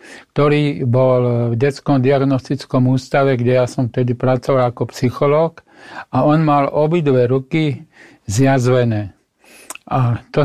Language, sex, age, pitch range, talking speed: Slovak, male, 50-69, 125-140 Hz, 120 wpm